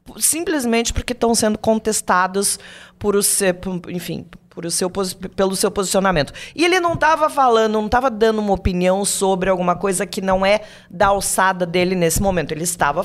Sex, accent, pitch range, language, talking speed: female, Brazilian, 180-235 Hz, Portuguese, 175 wpm